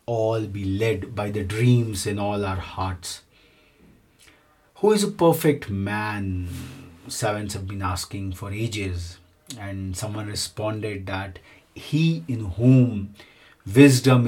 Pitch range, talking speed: 100-130 Hz, 120 wpm